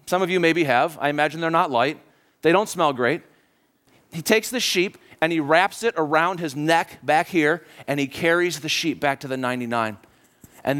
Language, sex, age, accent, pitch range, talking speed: English, male, 40-59, American, 145-225 Hz, 205 wpm